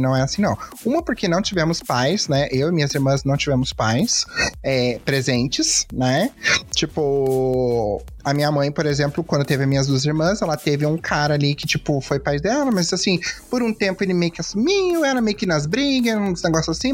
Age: 30-49